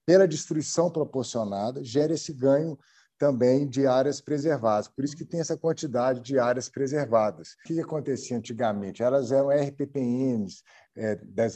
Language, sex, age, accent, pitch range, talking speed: Portuguese, male, 50-69, Brazilian, 135-175 Hz, 140 wpm